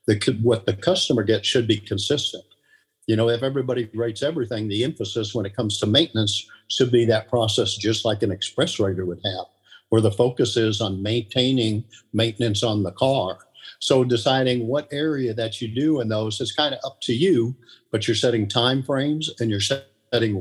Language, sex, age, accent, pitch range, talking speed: English, male, 50-69, American, 110-125 Hz, 190 wpm